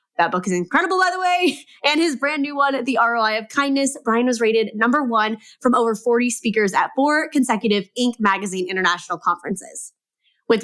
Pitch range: 205-265 Hz